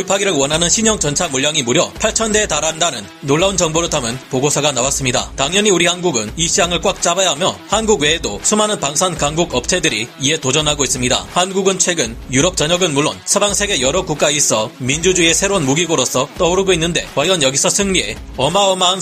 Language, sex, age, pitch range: Korean, male, 30-49, 140-190 Hz